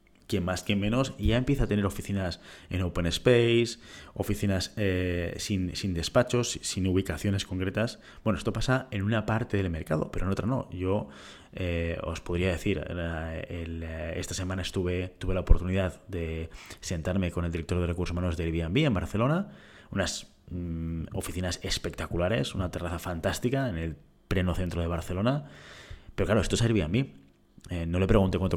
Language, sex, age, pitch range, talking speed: Spanish, male, 20-39, 85-105 Hz, 170 wpm